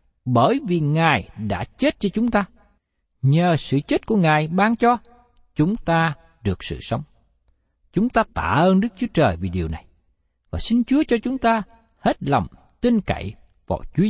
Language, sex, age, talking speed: Vietnamese, male, 60-79, 180 wpm